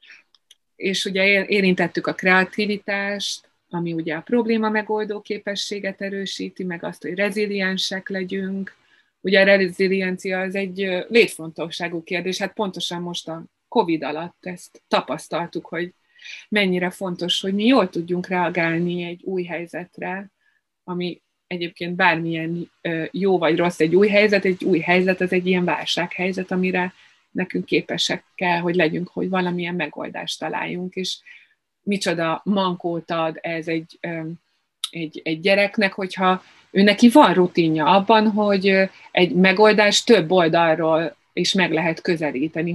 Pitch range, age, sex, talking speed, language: 170-200 Hz, 30-49, female, 130 wpm, Hungarian